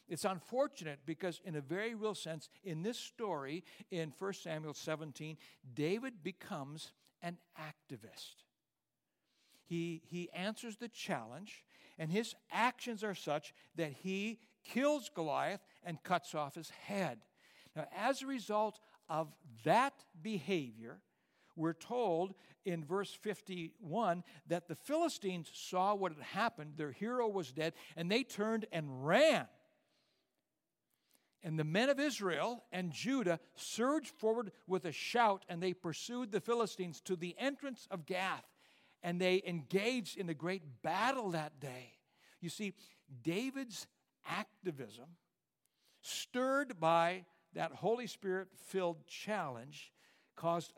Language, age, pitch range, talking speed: English, 60-79, 160-215 Hz, 130 wpm